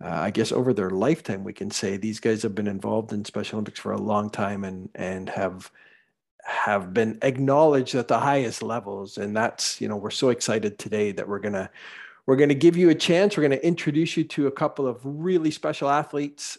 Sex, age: male, 50-69